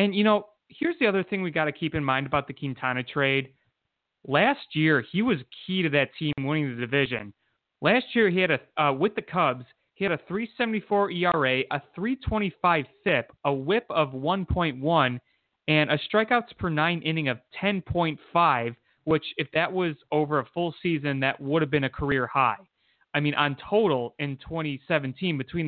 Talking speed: 185 wpm